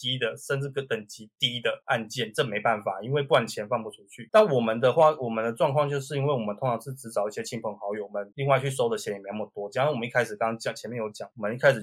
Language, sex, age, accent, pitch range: Chinese, male, 20-39, native, 110-130 Hz